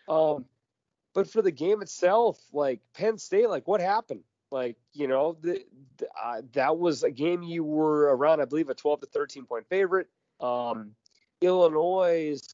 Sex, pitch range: male, 120-160 Hz